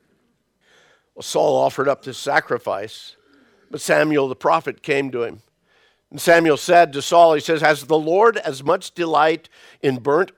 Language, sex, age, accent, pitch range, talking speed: English, male, 50-69, American, 120-160 Hz, 160 wpm